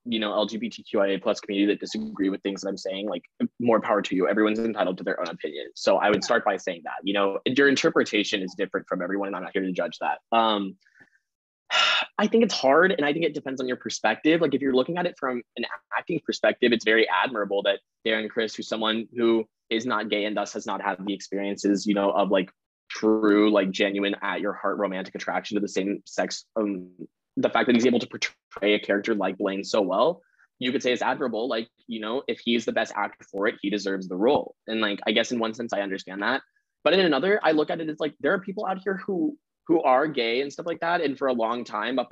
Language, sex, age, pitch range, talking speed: English, male, 20-39, 100-130 Hz, 250 wpm